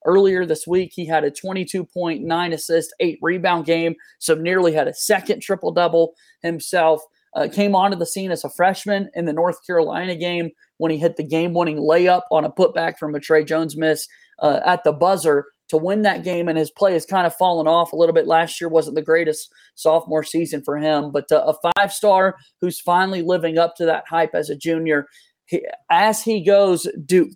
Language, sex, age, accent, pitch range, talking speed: English, male, 30-49, American, 155-185 Hz, 195 wpm